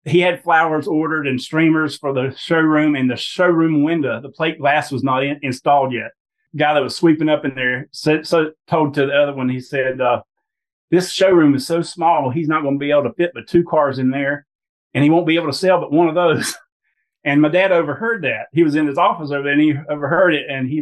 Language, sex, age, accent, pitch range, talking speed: English, male, 40-59, American, 135-160 Hz, 250 wpm